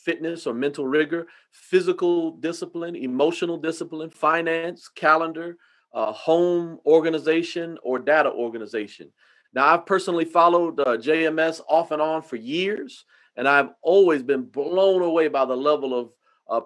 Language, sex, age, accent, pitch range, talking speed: English, male, 40-59, American, 135-170 Hz, 135 wpm